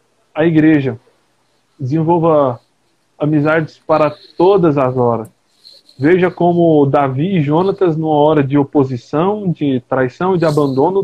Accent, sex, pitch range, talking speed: Brazilian, male, 145-190 Hz, 120 wpm